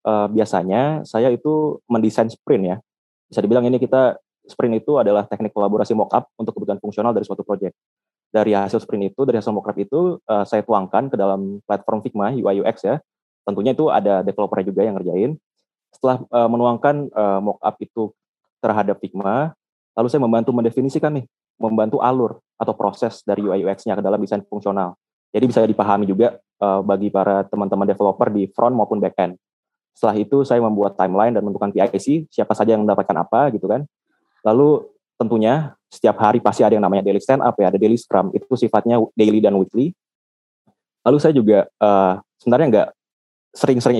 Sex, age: male, 20-39